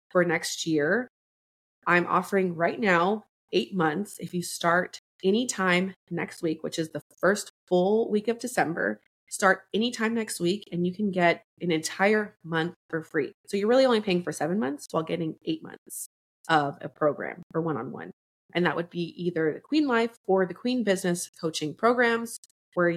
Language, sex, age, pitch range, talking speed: English, female, 20-39, 165-200 Hz, 185 wpm